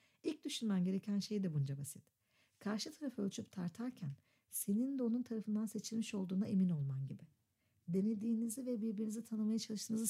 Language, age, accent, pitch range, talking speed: Turkish, 60-79, native, 170-225 Hz, 150 wpm